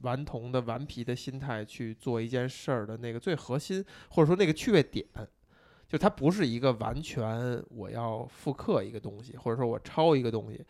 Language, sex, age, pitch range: Chinese, male, 20-39, 120-150 Hz